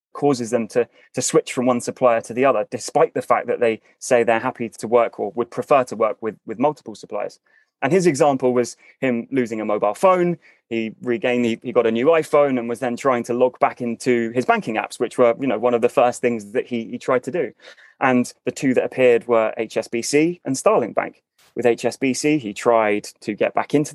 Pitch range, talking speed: 115-145 Hz, 230 wpm